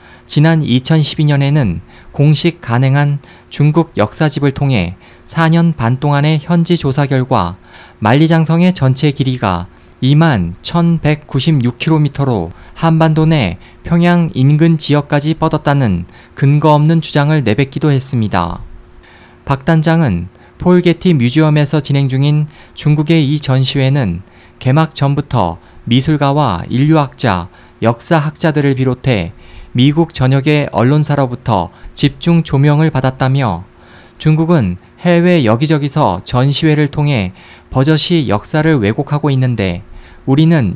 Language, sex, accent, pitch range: Korean, male, native, 120-155 Hz